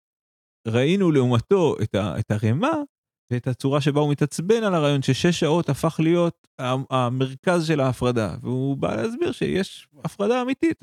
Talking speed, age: 140 wpm, 30-49